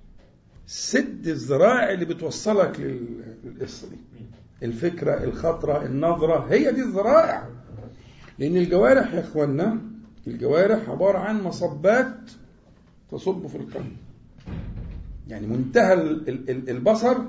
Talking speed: 85 wpm